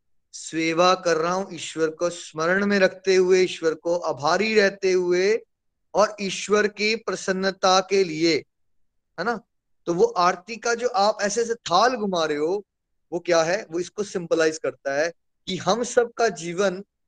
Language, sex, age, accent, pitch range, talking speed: Hindi, male, 20-39, native, 170-220 Hz, 170 wpm